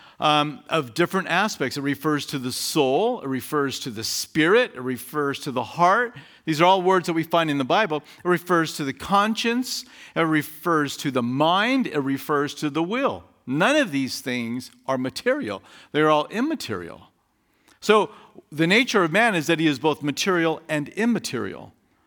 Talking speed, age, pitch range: 180 wpm, 50-69, 130-180 Hz